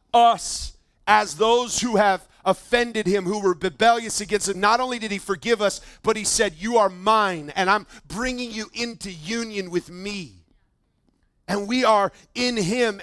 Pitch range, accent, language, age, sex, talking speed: 190-245 Hz, American, English, 30-49, male, 170 wpm